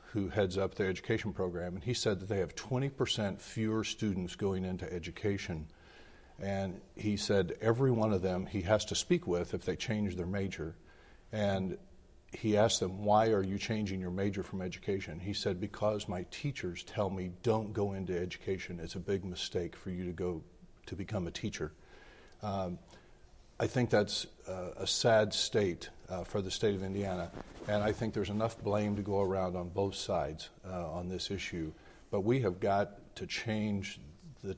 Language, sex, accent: English, male, American